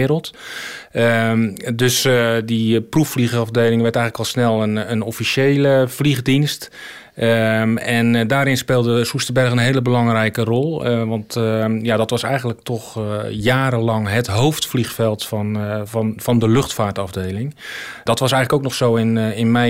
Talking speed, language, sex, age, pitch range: 160 wpm, Dutch, male, 40-59, 105-125 Hz